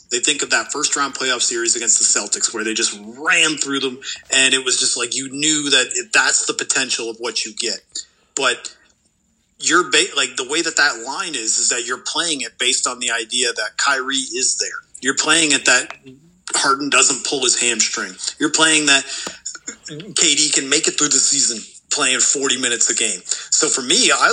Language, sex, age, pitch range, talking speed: English, male, 30-49, 125-175 Hz, 205 wpm